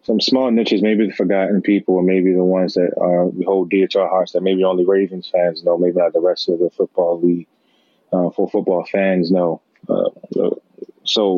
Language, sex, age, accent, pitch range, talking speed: English, male, 20-39, American, 90-100 Hz, 210 wpm